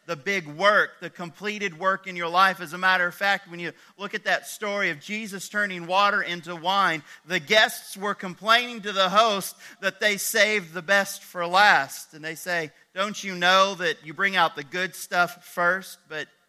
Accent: American